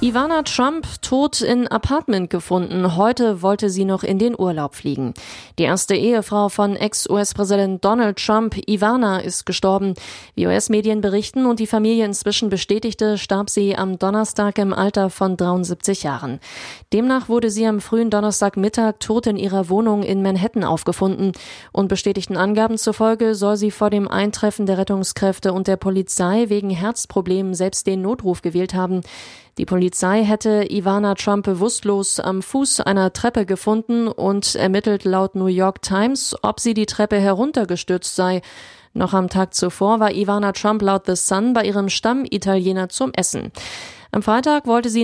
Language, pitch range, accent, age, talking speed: German, 190-220 Hz, German, 20-39, 155 wpm